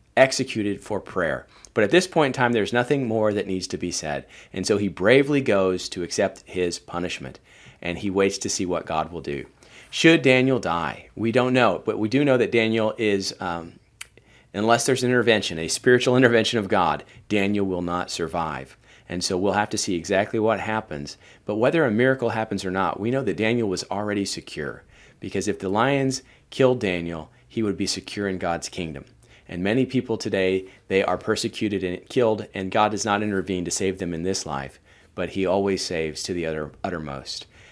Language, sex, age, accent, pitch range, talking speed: English, male, 40-59, American, 95-120 Hz, 200 wpm